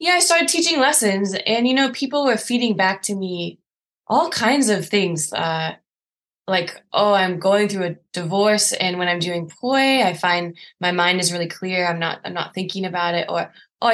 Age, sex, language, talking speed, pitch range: 20-39, female, English, 200 wpm, 170-220 Hz